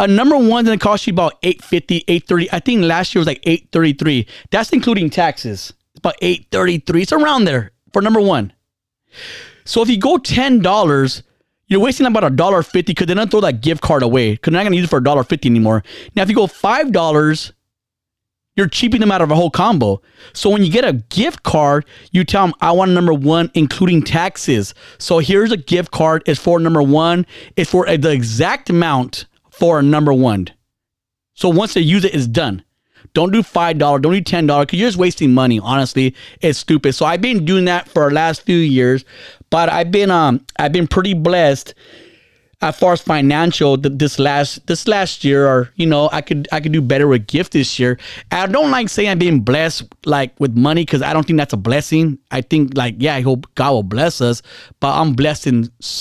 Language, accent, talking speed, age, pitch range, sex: English, American, 215 wpm, 30-49, 135-180 Hz, male